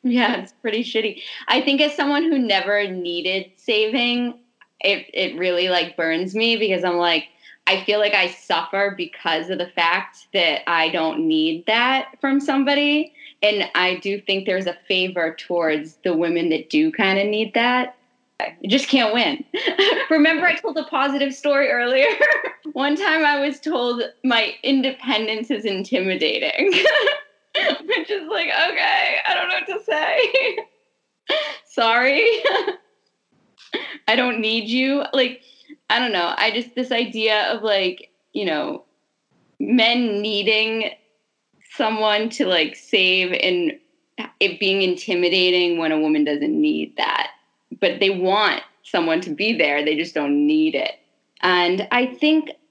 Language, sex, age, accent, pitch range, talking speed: English, female, 20-39, American, 190-290 Hz, 150 wpm